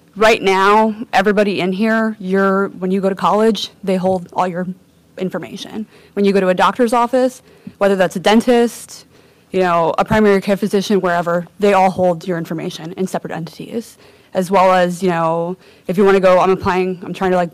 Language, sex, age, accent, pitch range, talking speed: English, female, 20-39, American, 180-210 Hz, 200 wpm